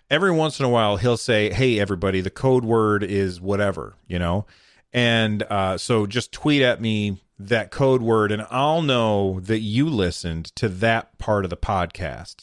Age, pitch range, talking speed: 40-59, 95-130 Hz, 185 wpm